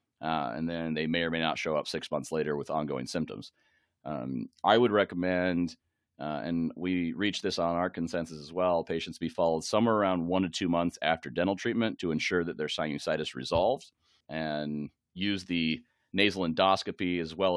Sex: male